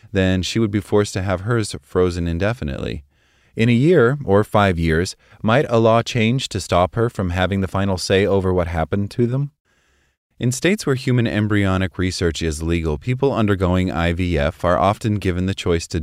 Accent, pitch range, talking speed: American, 80-110 Hz, 185 wpm